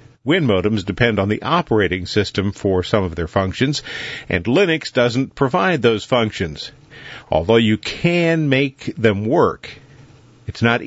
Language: English